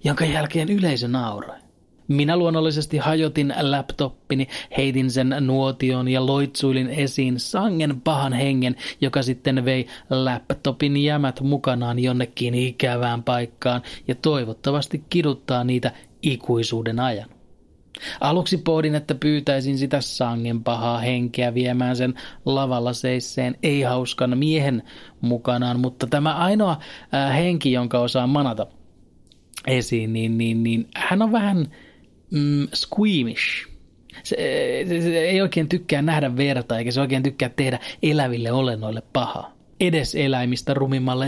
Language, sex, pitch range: Finnish, male, 125-150 Hz